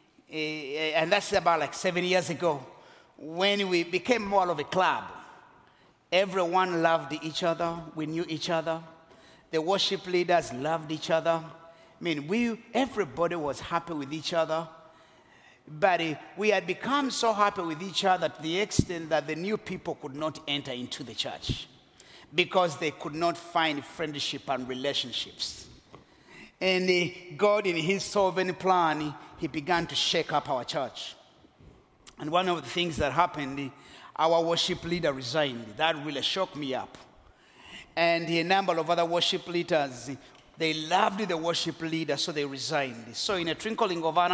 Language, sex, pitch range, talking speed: English, male, 155-185 Hz, 160 wpm